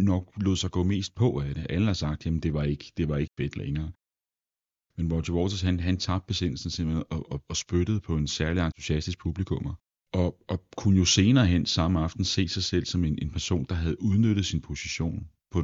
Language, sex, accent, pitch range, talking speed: Danish, male, native, 75-95 Hz, 220 wpm